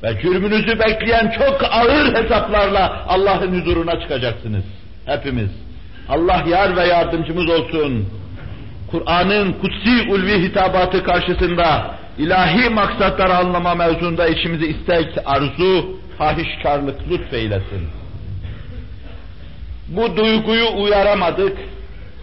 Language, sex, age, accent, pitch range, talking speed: Turkish, male, 60-79, native, 125-190 Hz, 90 wpm